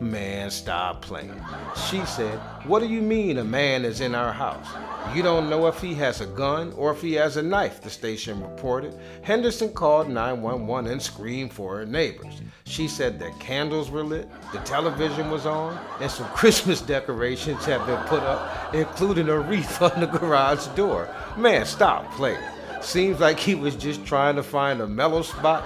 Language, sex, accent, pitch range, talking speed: English, male, American, 125-165 Hz, 185 wpm